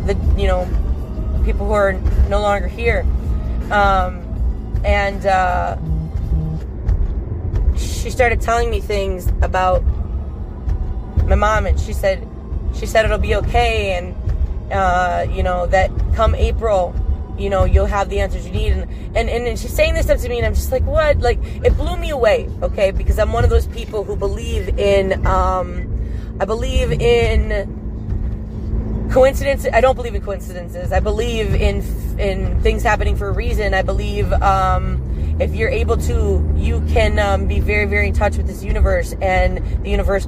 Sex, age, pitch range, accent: female, 20-39, 65-90 Hz, American